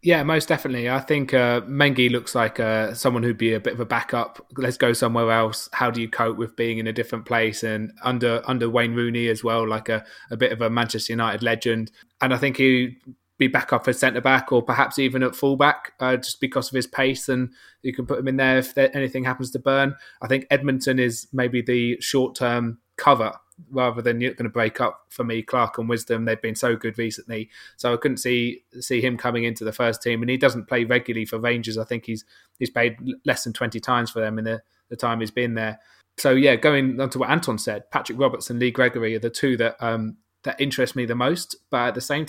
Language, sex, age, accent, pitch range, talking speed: English, male, 20-39, British, 115-130 Hz, 235 wpm